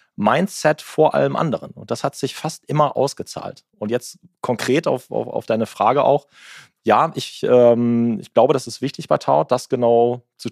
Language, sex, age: German, male, 30-49